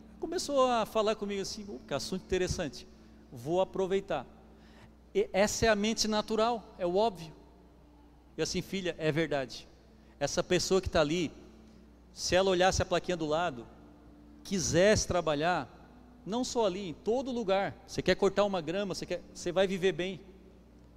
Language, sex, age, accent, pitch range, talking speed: Portuguese, male, 40-59, Brazilian, 175-215 Hz, 150 wpm